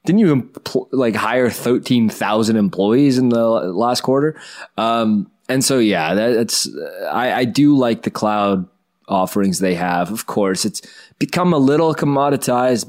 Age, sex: 20-39, male